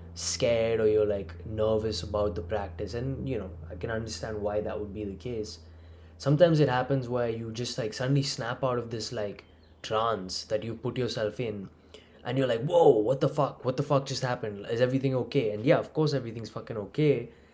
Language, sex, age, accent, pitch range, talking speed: English, male, 20-39, Indian, 105-135 Hz, 210 wpm